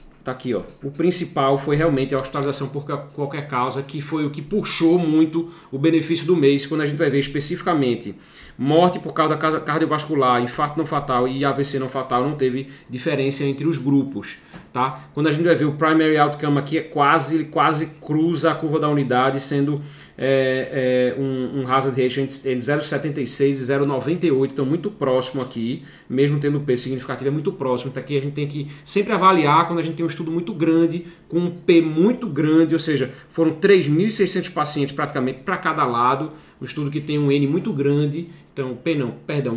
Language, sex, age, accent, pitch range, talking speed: Portuguese, male, 20-39, Brazilian, 135-160 Hz, 195 wpm